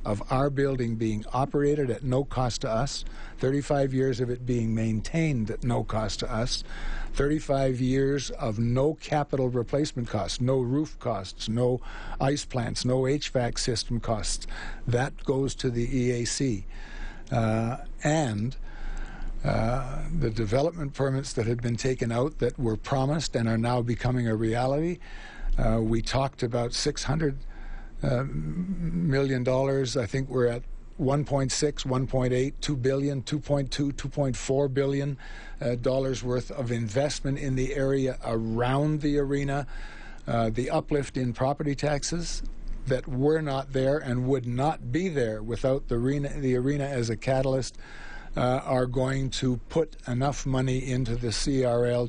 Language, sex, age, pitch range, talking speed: English, male, 60-79, 120-140 Hz, 145 wpm